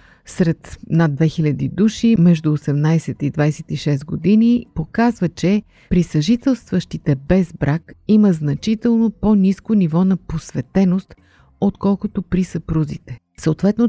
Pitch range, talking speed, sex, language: 155-210 Hz, 110 wpm, female, Bulgarian